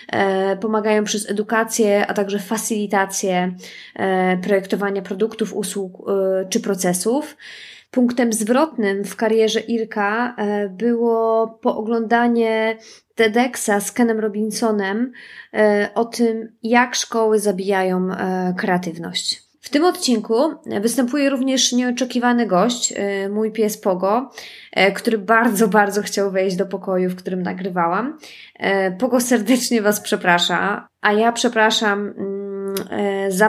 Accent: native